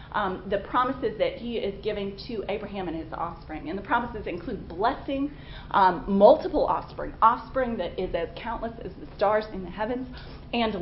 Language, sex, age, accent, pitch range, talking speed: English, female, 30-49, American, 195-240 Hz, 180 wpm